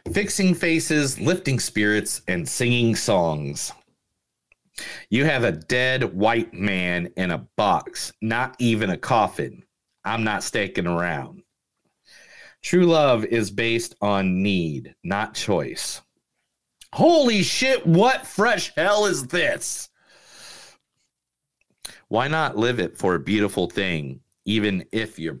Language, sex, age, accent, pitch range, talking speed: English, male, 40-59, American, 95-145 Hz, 120 wpm